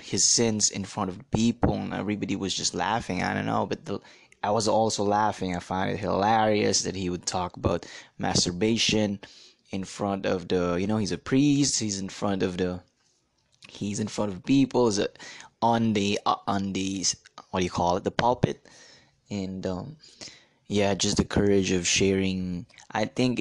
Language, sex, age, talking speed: English, male, 20-39, 180 wpm